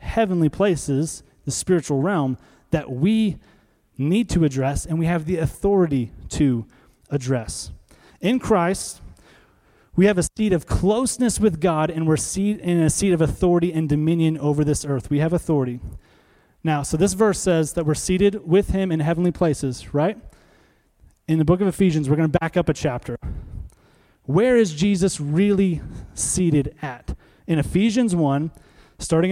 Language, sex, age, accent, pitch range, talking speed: English, male, 30-49, American, 145-190 Hz, 160 wpm